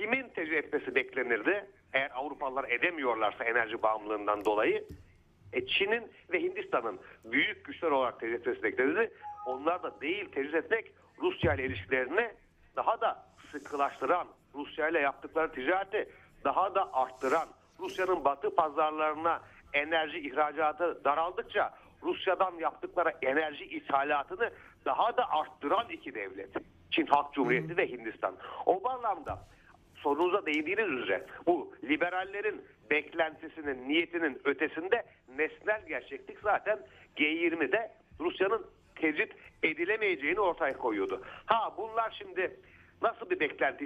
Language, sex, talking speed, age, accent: Turkish, male, 110 wpm, 60-79, native